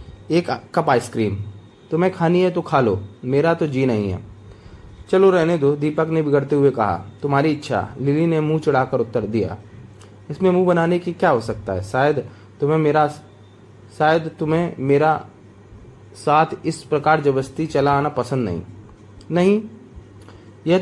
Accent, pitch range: native, 105-160 Hz